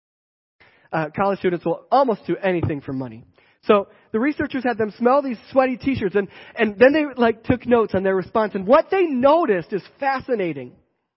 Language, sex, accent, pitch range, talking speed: English, male, American, 155-225 Hz, 190 wpm